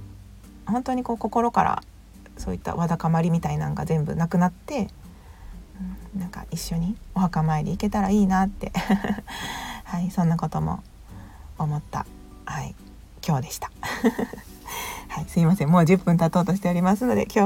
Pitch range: 155-210 Hz